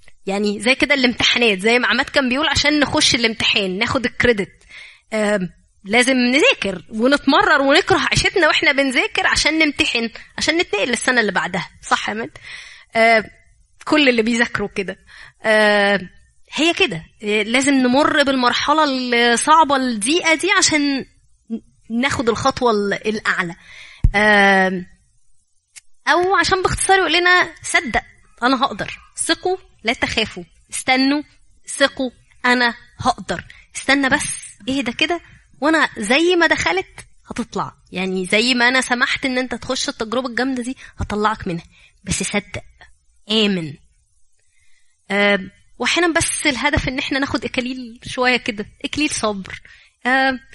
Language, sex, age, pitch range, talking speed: Arabic, female, 20-39, 215-300 Hz, 120 wpm